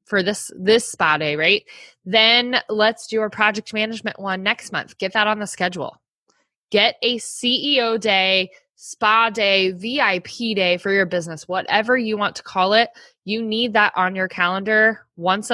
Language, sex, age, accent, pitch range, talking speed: English, female, 20-39, American, 185-240 Hz, 170 wpm